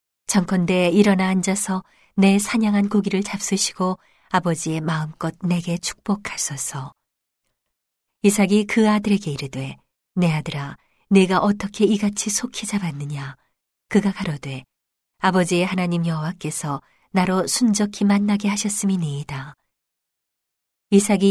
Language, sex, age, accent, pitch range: Korean, female, 40-59, native, 155-200 Hz